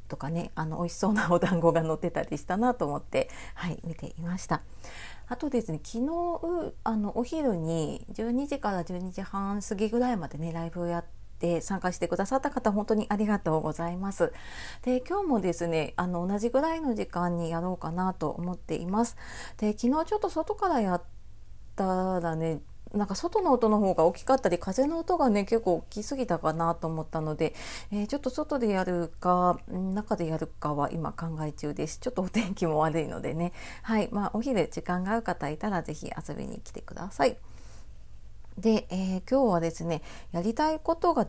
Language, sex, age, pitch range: Japanese, female, 30-49, 165-230 Hz